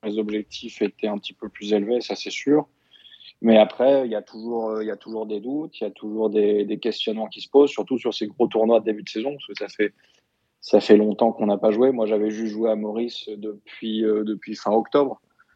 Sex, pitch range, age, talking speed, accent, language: male, 110-120 Hz, 20-39, 245 wpm, French, French